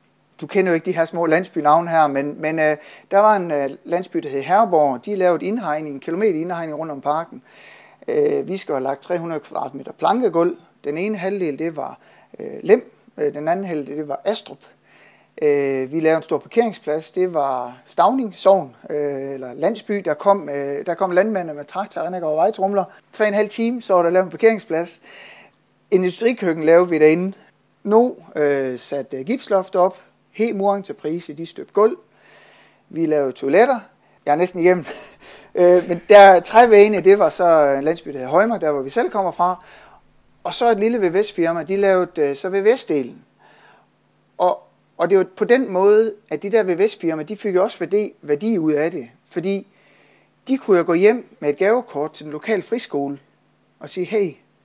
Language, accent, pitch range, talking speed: Danish, native, 155-205 Hz, 190 wpm